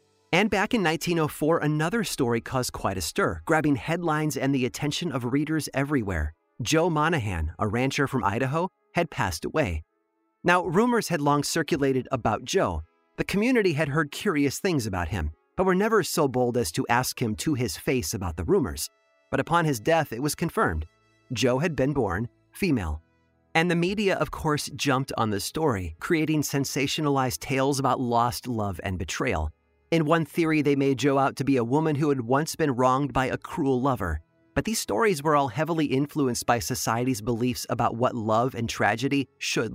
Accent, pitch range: American, 115-155 Hz